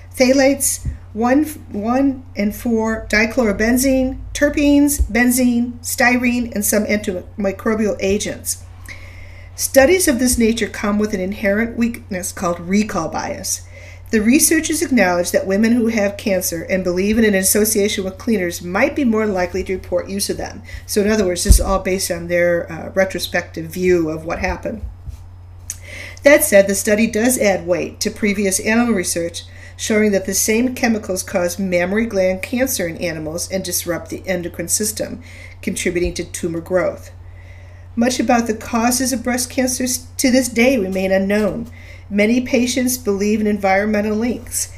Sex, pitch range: female, 175-230 Hz